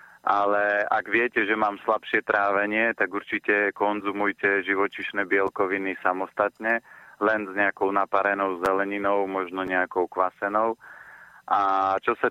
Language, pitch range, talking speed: Slovak, 95-105 Hz, 115 wpm